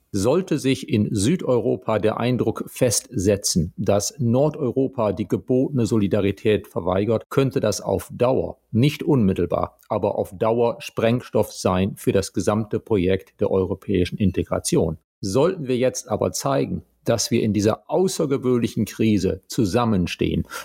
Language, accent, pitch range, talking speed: German, German, 105-125 Hz, 125 wpm